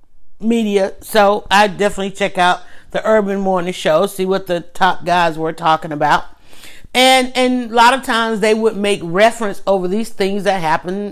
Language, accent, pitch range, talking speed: English, American, 180-220 Hz, 180 wpm